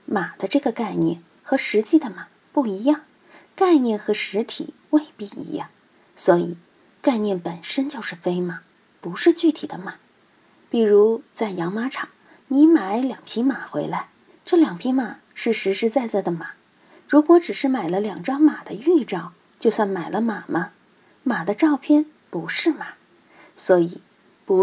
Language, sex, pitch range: Chinese, female, 185-285 Hz